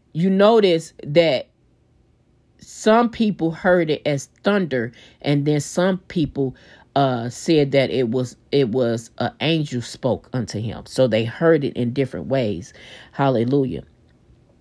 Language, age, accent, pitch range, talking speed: English, 40-59, American, 125-165 Hz, 135 wpm